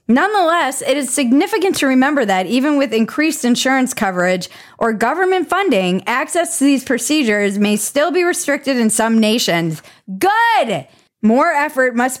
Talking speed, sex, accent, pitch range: 150 wpm, female, American, 205-270 Hz